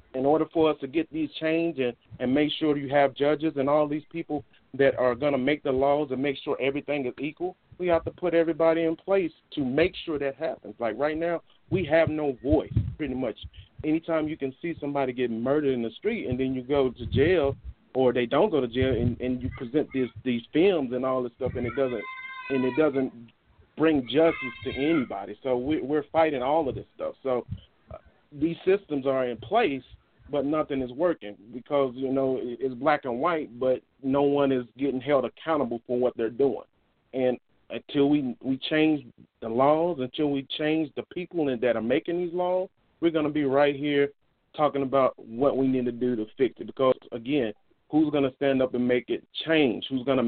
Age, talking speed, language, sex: 40-59, 210 wpm, English, male